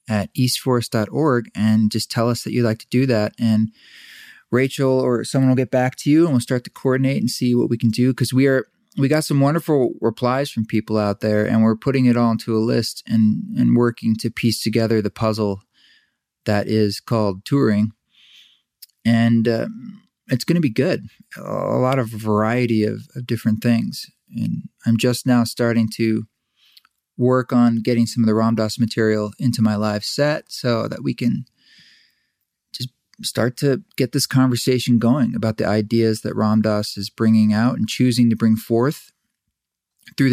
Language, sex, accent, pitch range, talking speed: English, male, American, 110-125 Hz, 180 wpm